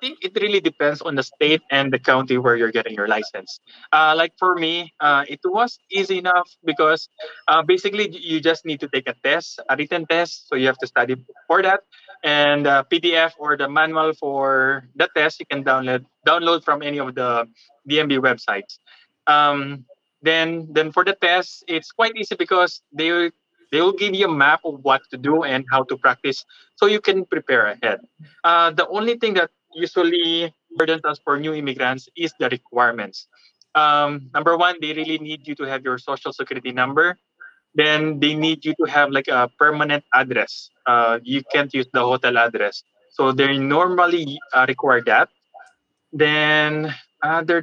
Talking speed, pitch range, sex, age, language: 185 wpm, 140-175 Hz, male, 20-39, English